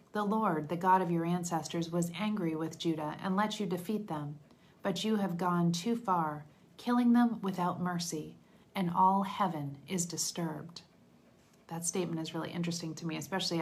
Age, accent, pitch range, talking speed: 40-59, American, 155-195 Hz, 170 wpm